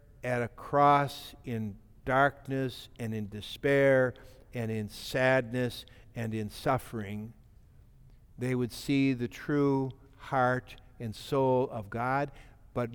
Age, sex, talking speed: 60-79, male, 115 wpm